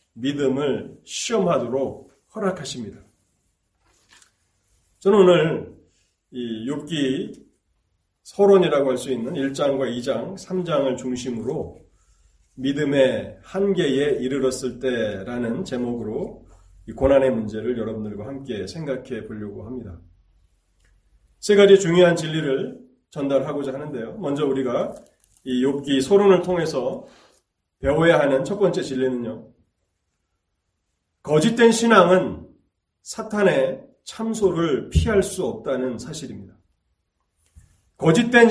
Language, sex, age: Korean, male, 30-49